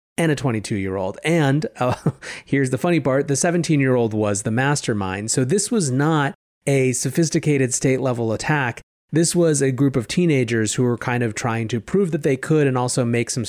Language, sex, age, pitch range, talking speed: English, male, 30-49, 120-155 Hz, 210 wpm